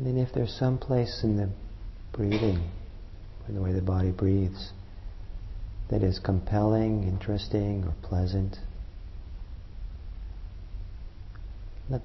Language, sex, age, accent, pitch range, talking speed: English, male, 40-59, American, 90-105 Hz, 110 wpm